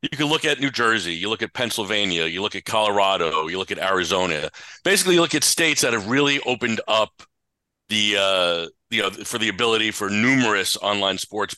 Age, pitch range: 40-59, 105-140 Hz